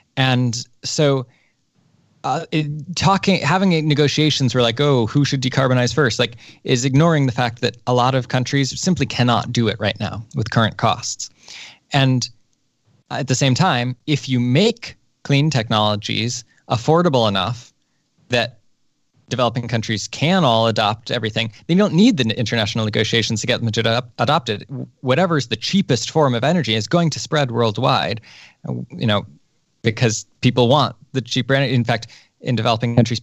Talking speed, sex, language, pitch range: 155 wpm, male, Danish, 120-140 Hz